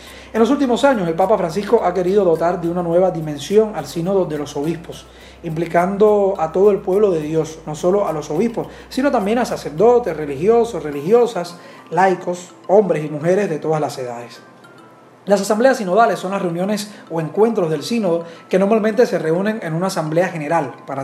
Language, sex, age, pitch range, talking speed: Spanish, male, 30-49, 155-200 Hz, 185 wpm